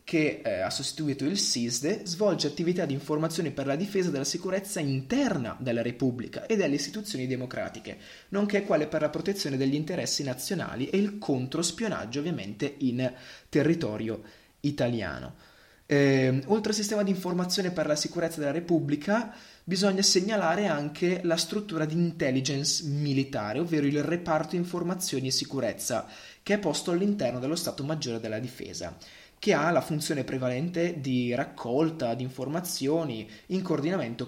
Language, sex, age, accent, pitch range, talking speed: Italian, male, 20-39, native, 125-175 Hz, 145 wpm